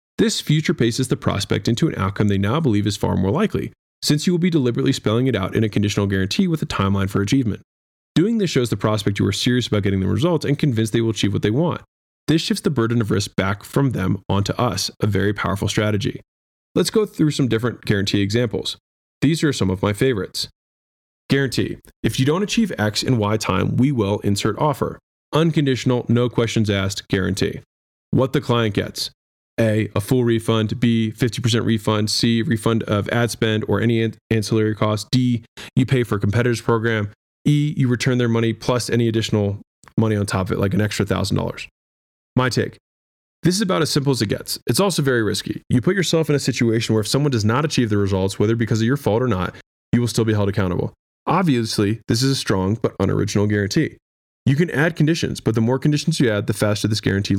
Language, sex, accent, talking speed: English, male, American, 215 wpm